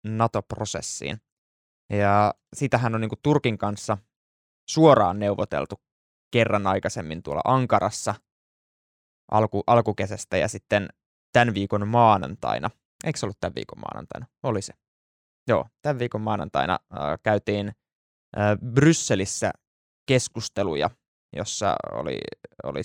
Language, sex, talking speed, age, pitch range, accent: Finnish, male, 95 wpm, 20-39, 100-115 Hz, native